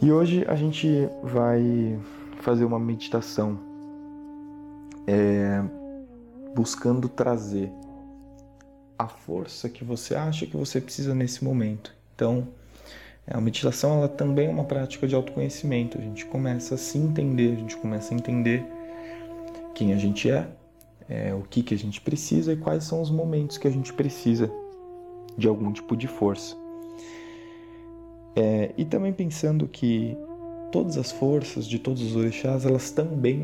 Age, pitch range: 20-39, 110-150 Hz